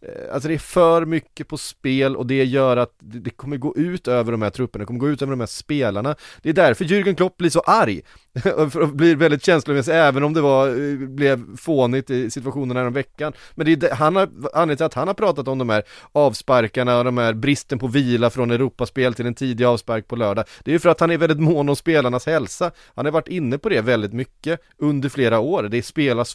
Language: Swedish